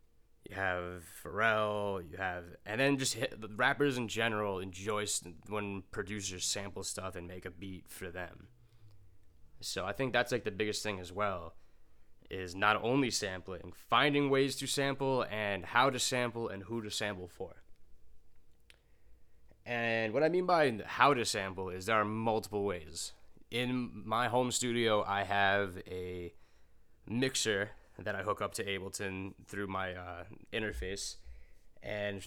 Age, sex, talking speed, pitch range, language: 20-39, male, 150 wpm, 95-115 Hz, English